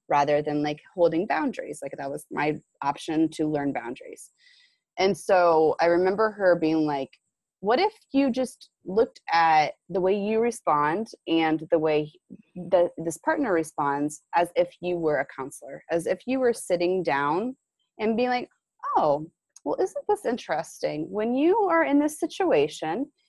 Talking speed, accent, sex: 160 wpm, American, female